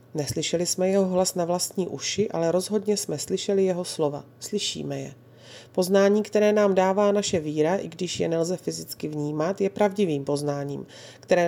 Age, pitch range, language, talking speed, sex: 30-49, 145-190 Hz, Slovak, 160 wpm, female